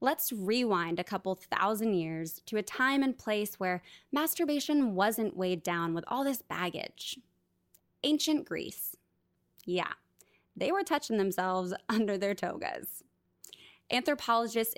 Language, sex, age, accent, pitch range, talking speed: English, female, 20-39, American, 185-240 Hz, 125 wpm